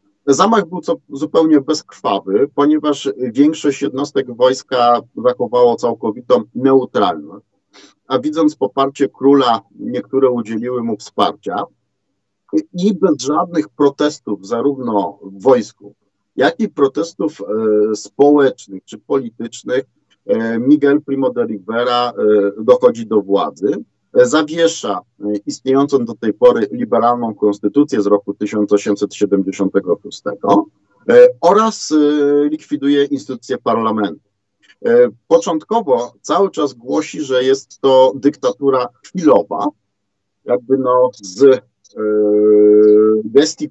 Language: Polish